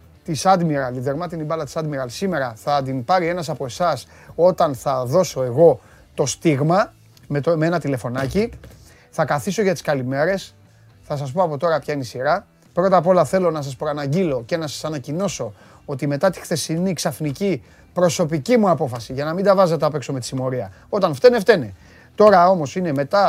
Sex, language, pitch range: male, Greek, 130-180 Hz